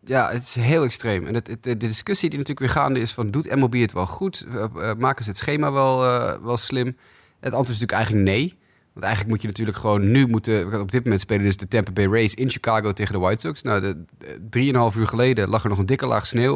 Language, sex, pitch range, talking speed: Dutch, male, 105-135 Hz, 255 wpm